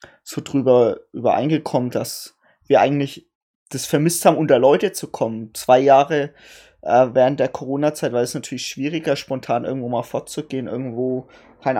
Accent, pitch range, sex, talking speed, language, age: German, 125-145 Hz, male, 145 wpm, German, 20-39